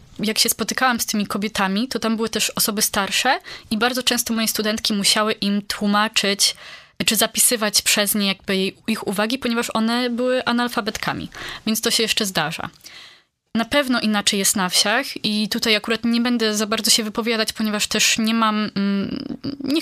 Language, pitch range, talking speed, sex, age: Polish, 205-245 Hz, 170 wpm, female, 20-39